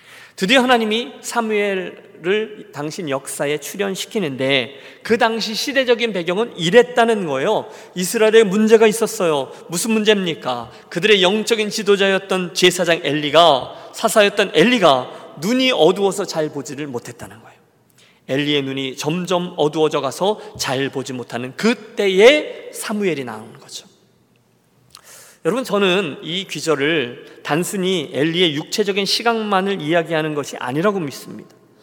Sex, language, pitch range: male, Korean, 165-235 Hz